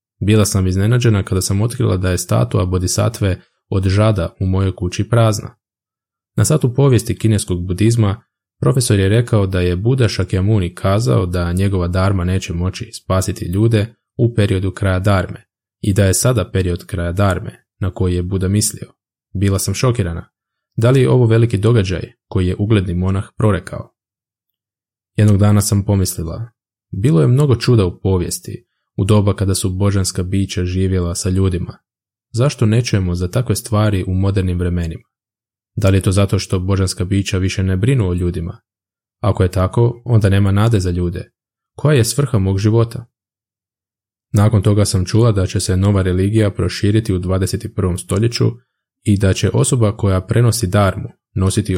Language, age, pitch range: Croatian, 20-39, 95-115 Hz